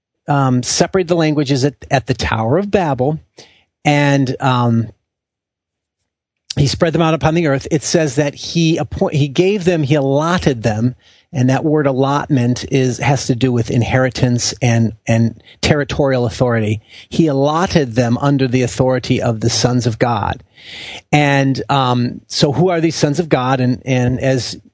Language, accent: English, American